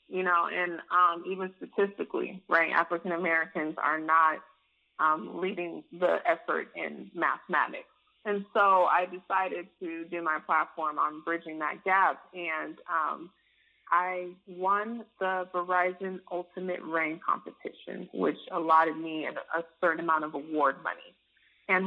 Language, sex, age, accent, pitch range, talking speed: English, female, 20-39, American, 160-185 Hz, 130 wpm